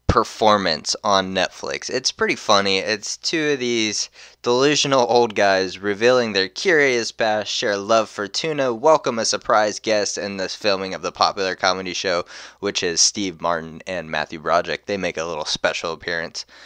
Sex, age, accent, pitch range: male, 20-39, American, 90-115 Hz